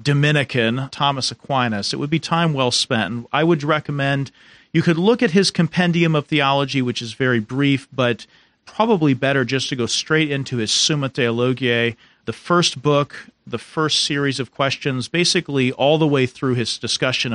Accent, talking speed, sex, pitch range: American, 175 wpm, male, 120-155 Hz